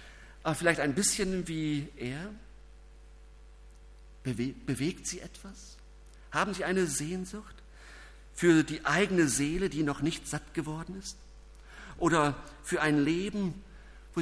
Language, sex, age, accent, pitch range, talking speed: German, male, 50-69, German, 120-185 Hz, 120 wpm